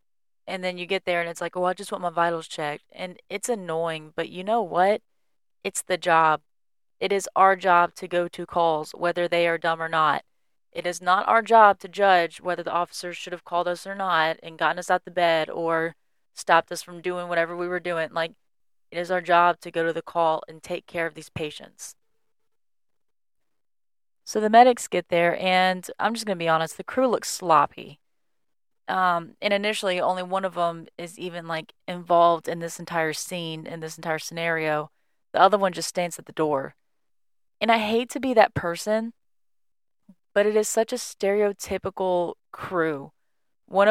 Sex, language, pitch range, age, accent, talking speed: female, English, 165-195 Hz, 30-49, American, 200 wpm